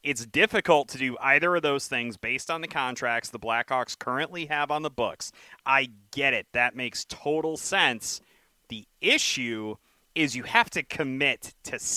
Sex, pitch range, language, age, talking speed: male, 125-170 Hz, English, 30-49, 170 wpm